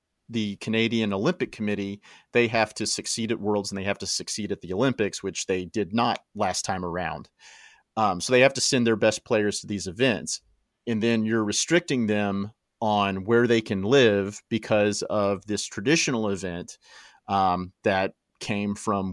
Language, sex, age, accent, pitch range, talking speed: English, male, 40-59, American, 100-115 Hz, 175 wpm